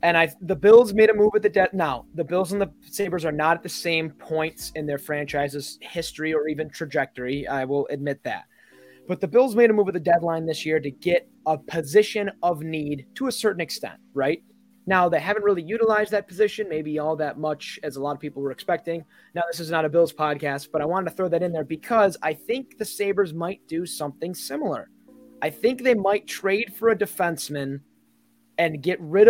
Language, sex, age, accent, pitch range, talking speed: English, male, 20-39, American, 150-190 Hz, 220 wpm